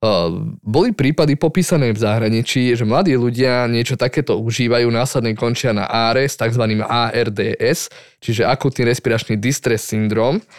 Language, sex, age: Slovak, male, 20-39